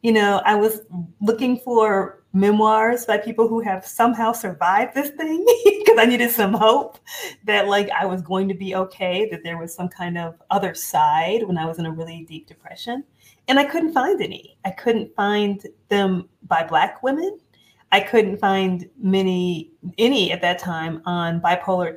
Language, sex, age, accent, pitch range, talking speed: English, female, 30-49, American, 180-235 Hz, 180 wpm